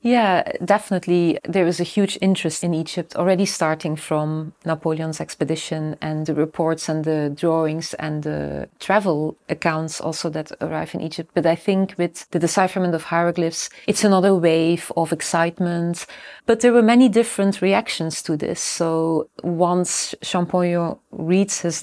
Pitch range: 160-190 Hz